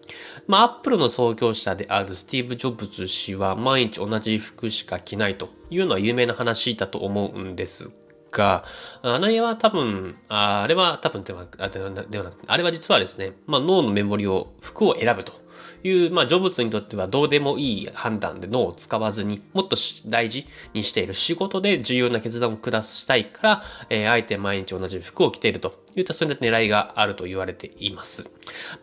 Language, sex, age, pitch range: Japanese, male, 30-49, 100-135 Hz